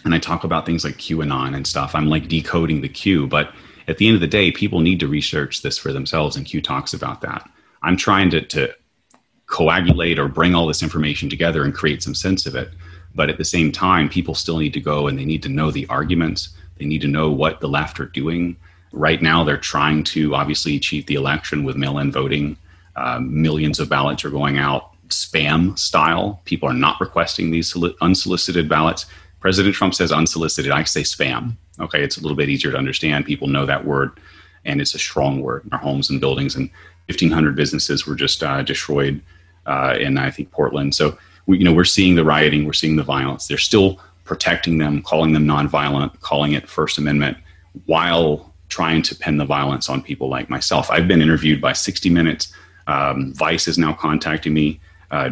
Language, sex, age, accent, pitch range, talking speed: English, male, 30-49, American, 75-85 Hz, 205 wpm